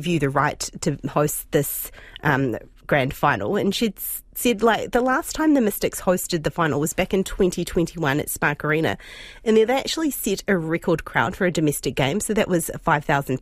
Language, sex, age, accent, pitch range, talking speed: English, female, 30-49, Australian, 160-215 Hz, 190 wpm